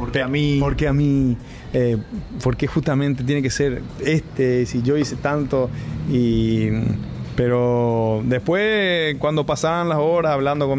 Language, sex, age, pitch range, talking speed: English, male, 30-49, 110-145 Hz, 145 wpm